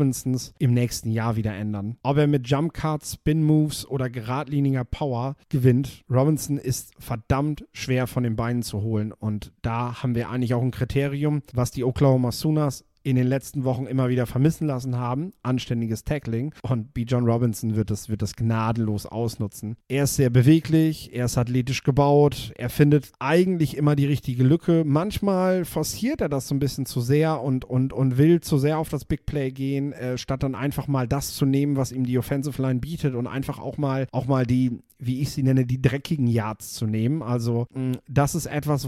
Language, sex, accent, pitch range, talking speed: German, male, German, 120-140 Hz, 200 wpm